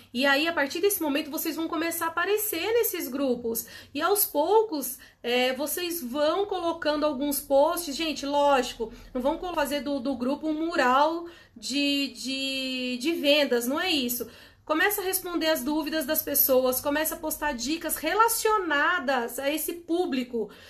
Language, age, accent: Portuguese, 30-49, Brazilian